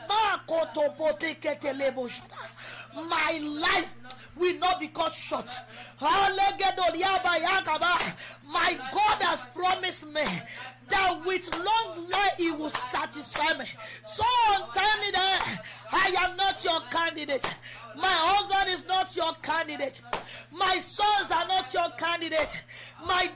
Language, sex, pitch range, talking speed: English, female, 325-405 Hz, 110 wpm